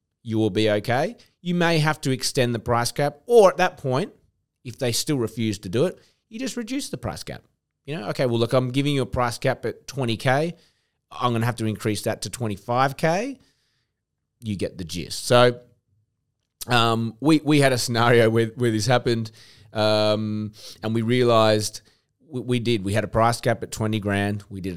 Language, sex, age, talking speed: English, male, 30-49, 200 wpm